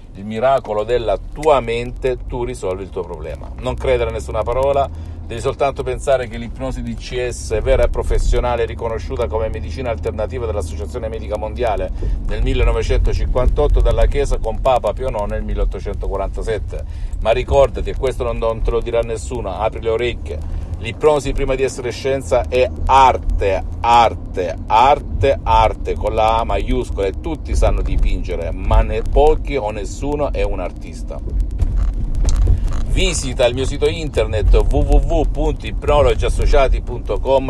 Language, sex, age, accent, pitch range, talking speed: Italian, male, 50-69, native, 90-130 Hz, 140 wpm